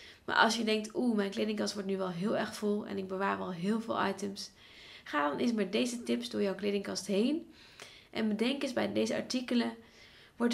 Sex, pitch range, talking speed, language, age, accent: female, 190-220 Hz, 210 wpm, Dutch, 20-39, Dutch